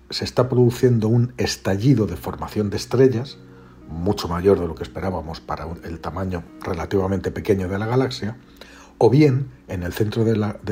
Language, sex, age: Spanish, male, 60-79